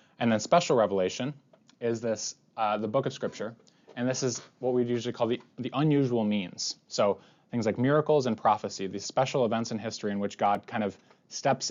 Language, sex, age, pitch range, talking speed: English, male, 20-39, 105-130 Hz, 205 wpm